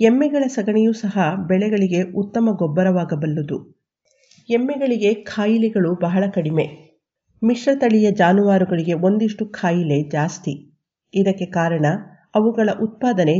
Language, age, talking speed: Kannada, 50-69, 90 wpm